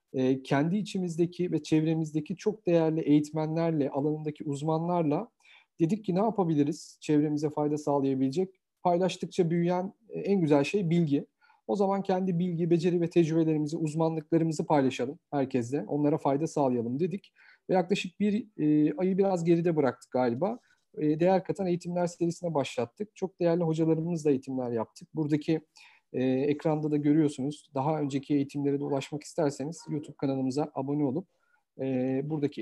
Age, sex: 40-59, male